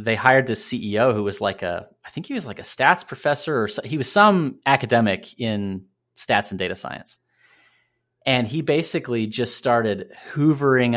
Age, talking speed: 30-49, 180 wpm